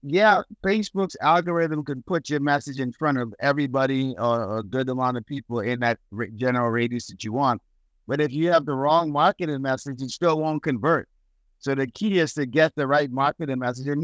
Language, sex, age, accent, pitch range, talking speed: English, male, 50-69, American, 125-165 Hz, 210 wpm